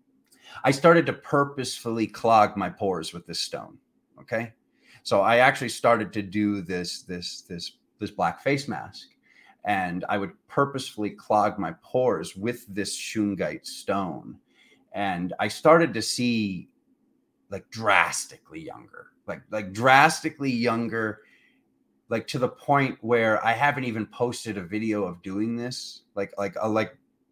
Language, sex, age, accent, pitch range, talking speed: English, male, 30-49, American, 100-125 Hz, 145 wpm